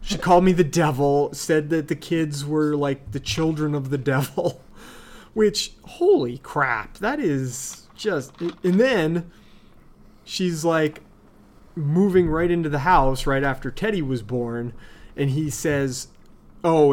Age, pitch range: 30-49, 125-155 Hz